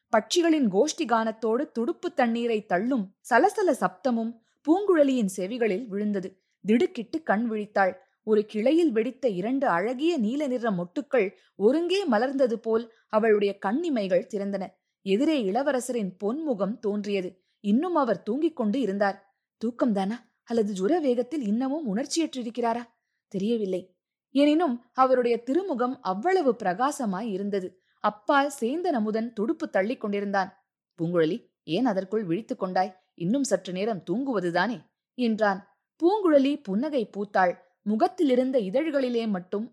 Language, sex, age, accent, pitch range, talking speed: Tamil, female, 20-39, native, 200-265 Hz, 105 wpm